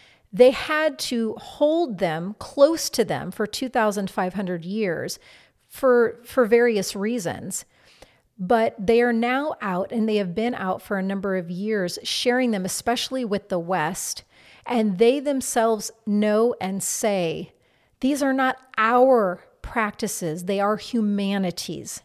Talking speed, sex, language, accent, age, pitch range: 135 wpm, female, English, American, 40-59, 190-235 Hz